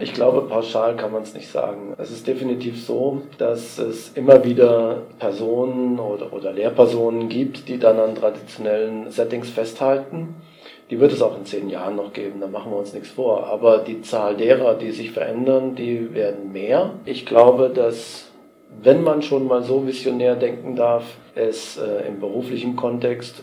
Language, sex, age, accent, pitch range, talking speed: German, male, 40-59, German, 115-130 Hz, 175 wpm